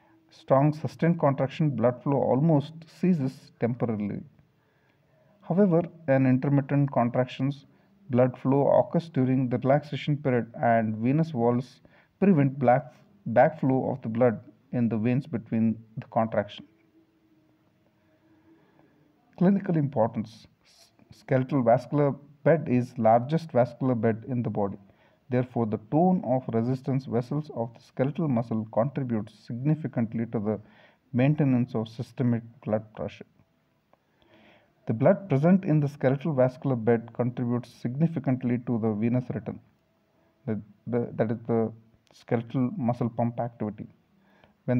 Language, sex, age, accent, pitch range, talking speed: English, male, 50-69, Indian, 120-150 Hz, 115 wpm